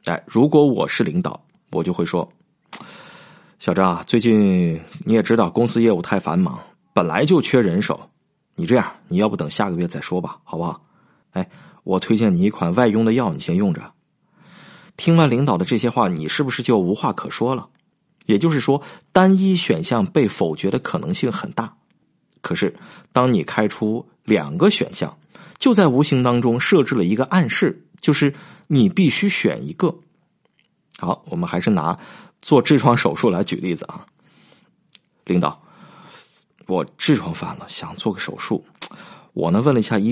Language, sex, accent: Chinese, male, native